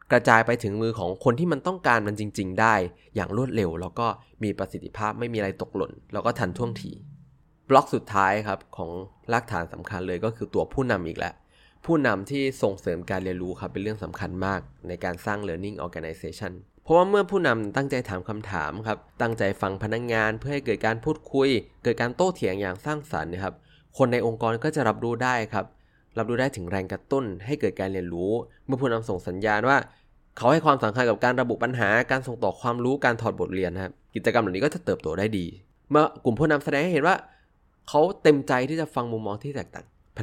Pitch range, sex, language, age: 95-130 Hz, male, Thai, 20-39